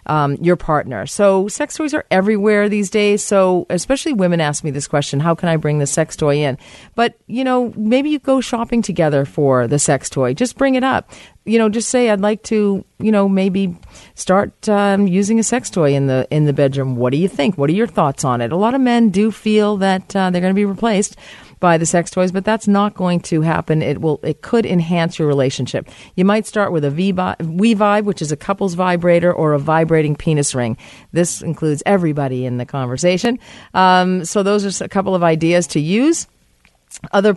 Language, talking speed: English, 220 wpm